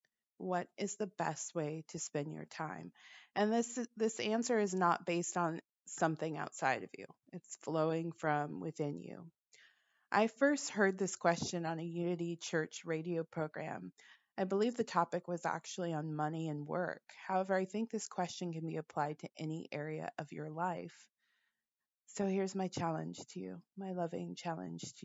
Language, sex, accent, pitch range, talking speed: English, female, American, 160-200 Hz, 170 wpm